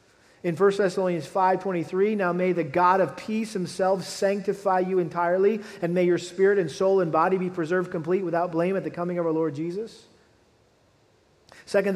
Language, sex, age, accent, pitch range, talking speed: English, male, 40-59, American, 170-195 Hz, 175 wpm